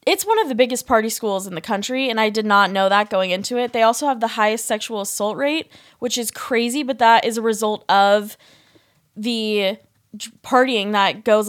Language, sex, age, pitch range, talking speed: English, female, 10-29, 215-265 Hz, 210 wpm